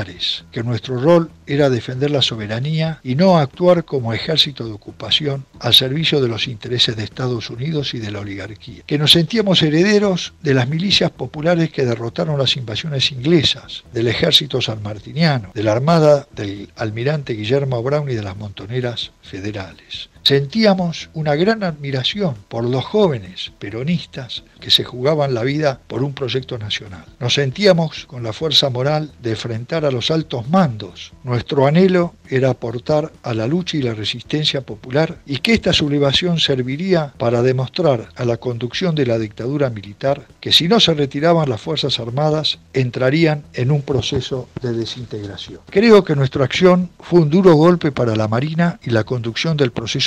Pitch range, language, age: 115-155 Hz, Spanish, 60-79